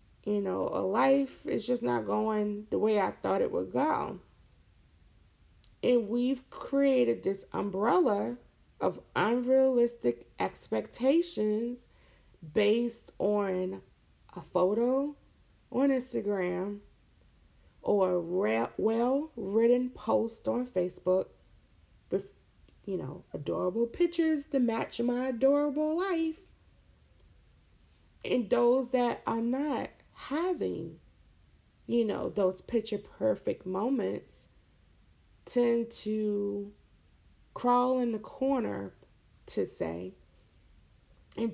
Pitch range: 180-260 Hz